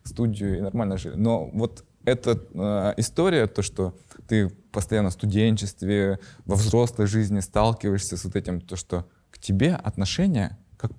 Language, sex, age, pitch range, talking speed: Russian, male, 20-39, 90-115 Hz, 155 wpm